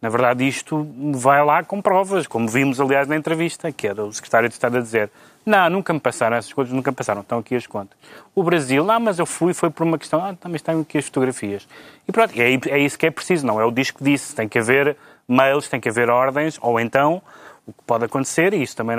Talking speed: 255 wpm